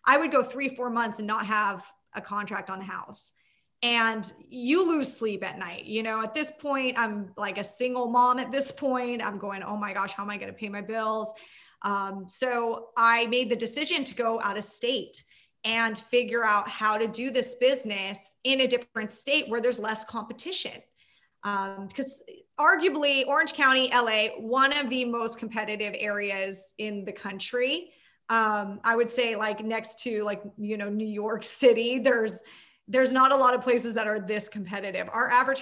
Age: 20-39